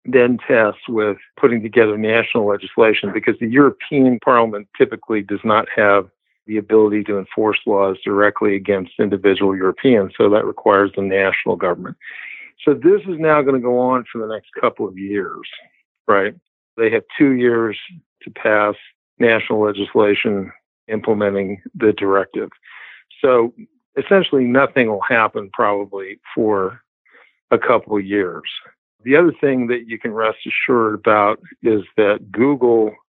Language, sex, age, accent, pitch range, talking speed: English, male, 60-79, American, 100-120 Hz, 145 wpm